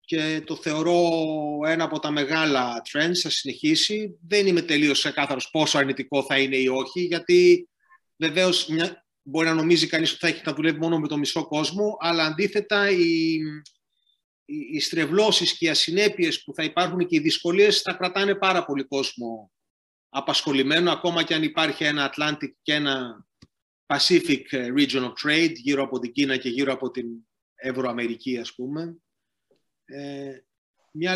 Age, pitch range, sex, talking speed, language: 30-49, 135-175 Hz, male, 160 wpm, Greek